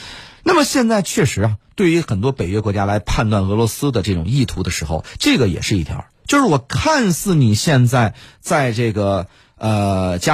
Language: Chinese